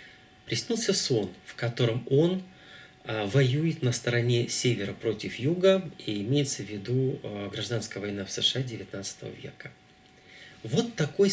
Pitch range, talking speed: 110-150 Hz, 120 wpm